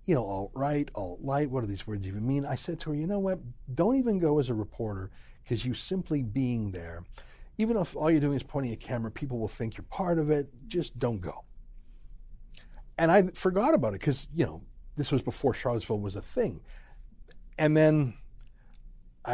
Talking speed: 200 wpm